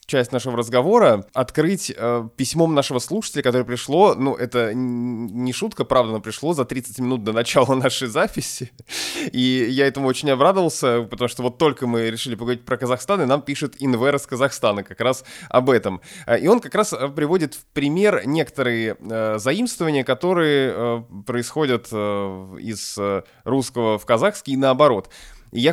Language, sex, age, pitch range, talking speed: Russian, male, 20-39, 110-145 Hz, 160 wpm